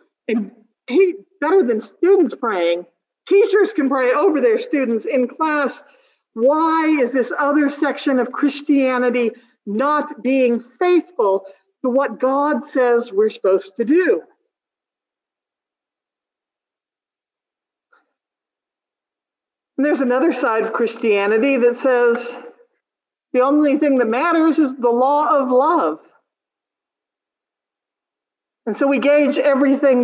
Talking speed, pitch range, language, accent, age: 110 wpm, 215-305 Hz, English, American, 50-69